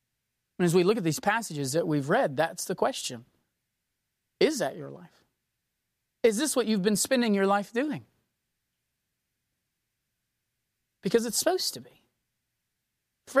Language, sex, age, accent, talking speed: English, male, 40-59, American, 145 wpm